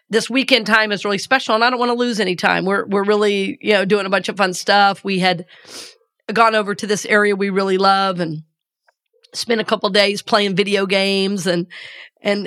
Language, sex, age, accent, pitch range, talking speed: English, female, 40-59, American, 195-255 Hz, 220 wpm